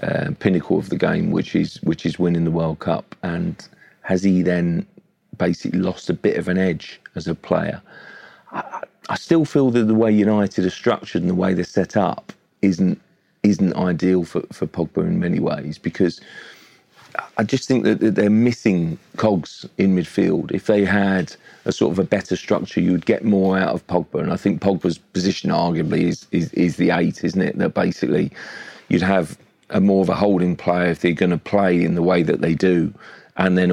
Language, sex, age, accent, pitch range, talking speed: English, male, 40-59, British, 90-105 Hz, 200 wpm